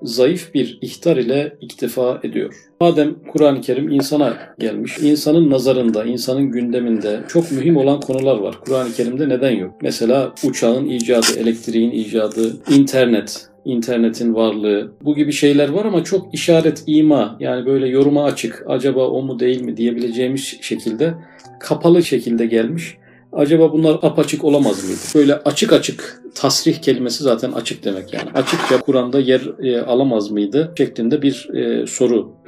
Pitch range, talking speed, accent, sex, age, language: 120-150 Hz, 140 wpm, native, male, 40-59, Turkish